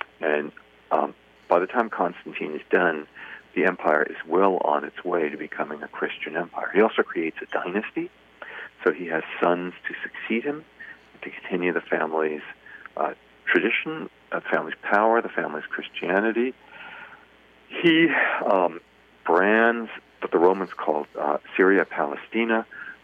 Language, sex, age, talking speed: English, male, 50-69, 140 wpm